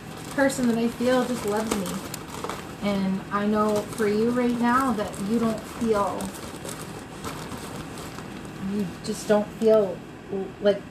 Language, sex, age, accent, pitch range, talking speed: English, female, 30-49, American, 190-225 Hz, 125 wpm